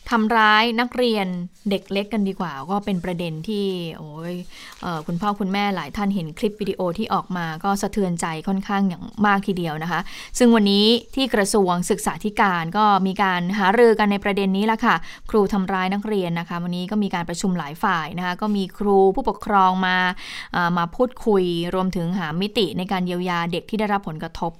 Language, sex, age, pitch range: Thai, female, 20-39, 180-220 Hz